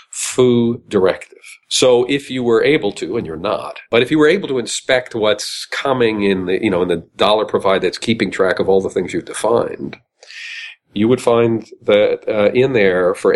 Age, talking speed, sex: 50-69, 185 wpm, male